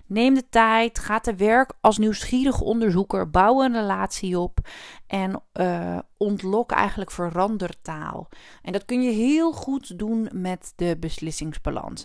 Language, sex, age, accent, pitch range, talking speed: Dutch, female, 30-49, Dutch, 185-235 Hz, 140 wpm